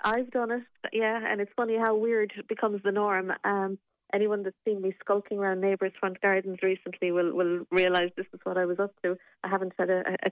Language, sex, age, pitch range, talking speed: English, female, 30-49, 180-210 Hz, 225 wpm